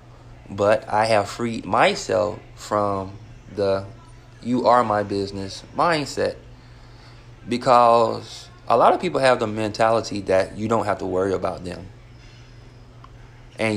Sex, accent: male, American